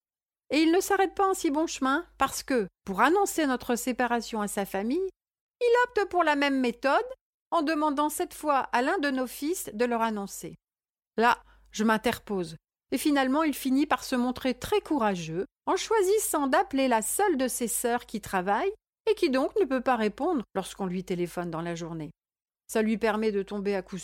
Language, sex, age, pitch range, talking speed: French, female, 50-69, 200-275 Hz, 195 wpm